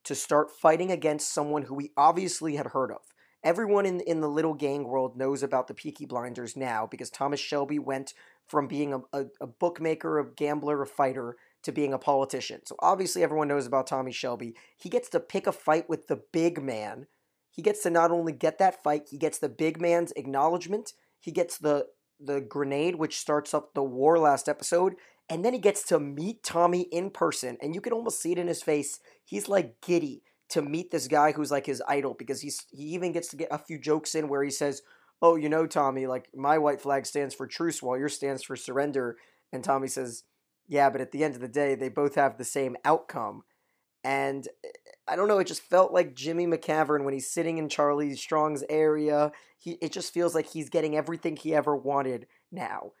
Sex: male